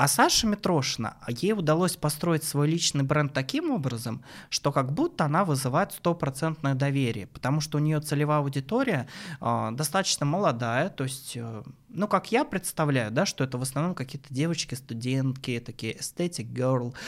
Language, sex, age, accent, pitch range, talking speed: Russian, male, 20-39, native, 130-165 Hz, 150 wpm